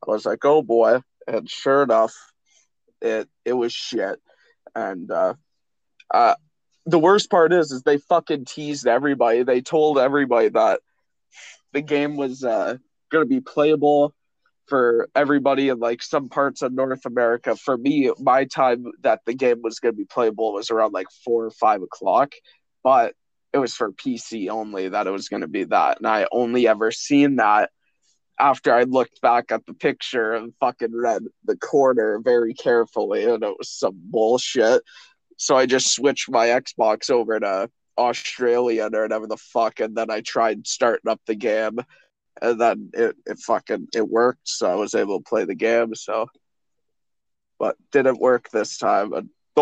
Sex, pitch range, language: male, 115-155 Hz, English